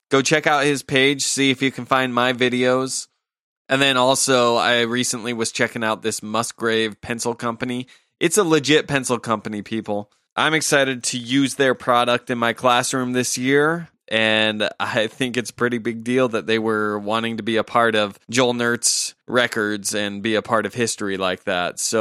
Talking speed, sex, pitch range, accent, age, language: 190 wpm, male, 105-125 Hz, American, 20-39, English